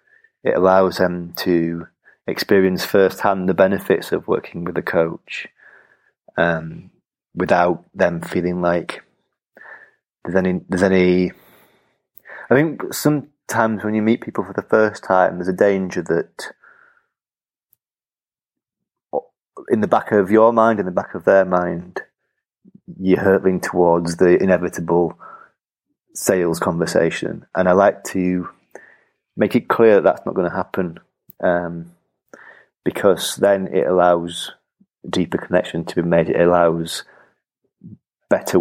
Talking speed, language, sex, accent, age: 130 wpm, English, male, British, 30-49